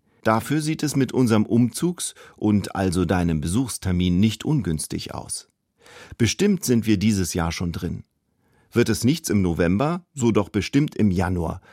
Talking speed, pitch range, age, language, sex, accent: 155 wpm, 90-120 Hz, 50-69, German, male, German